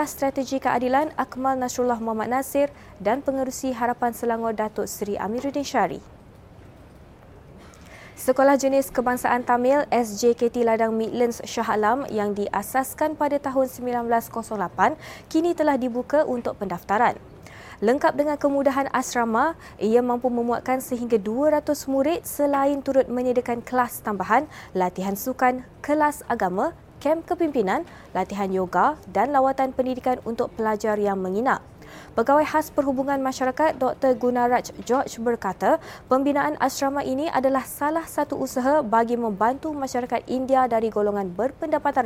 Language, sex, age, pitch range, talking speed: Malay, female, 20-39, 230-275 Hz, 120 wpm